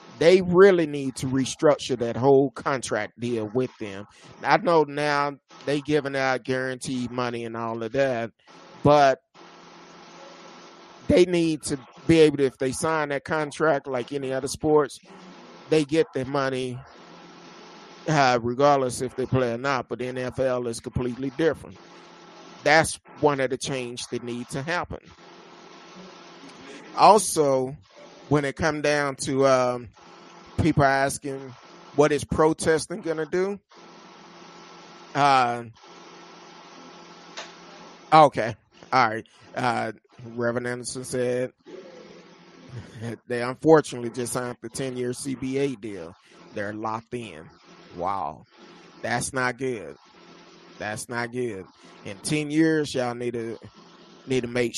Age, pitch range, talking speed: 30-49, 120-150 Hz, 125 wpm